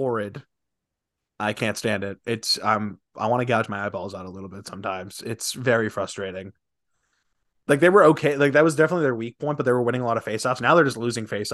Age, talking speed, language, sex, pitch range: 20-39, 240 wpm, English, male, 105-125 Hz